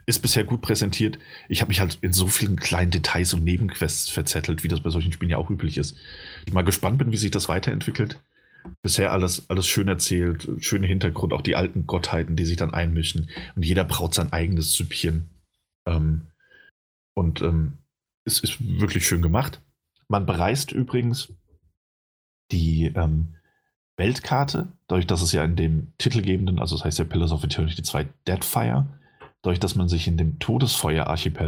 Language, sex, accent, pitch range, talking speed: German, male, German, 80-100 Hz, 175 wpm